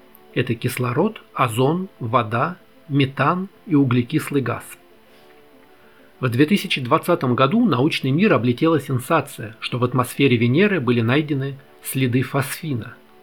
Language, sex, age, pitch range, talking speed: Russian, male, 40-59, 115-150 Hz, 105 wpm